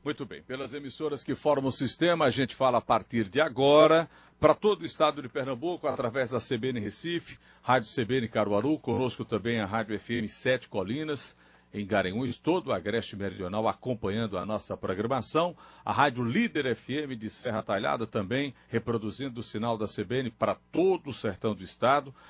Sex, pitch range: male, 100-135 Hz